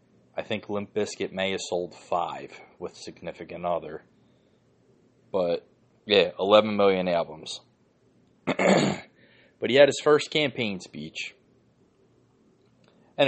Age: 30-49